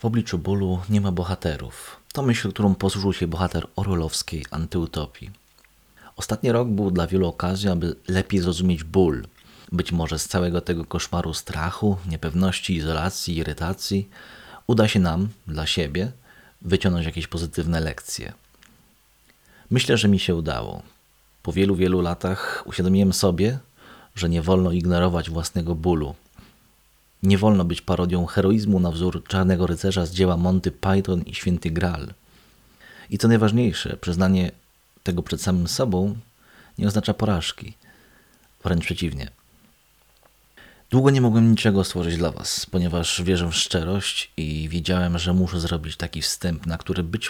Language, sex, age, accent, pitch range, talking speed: Polish, male, 30-49, native, 85-95 Hz, 140 wpm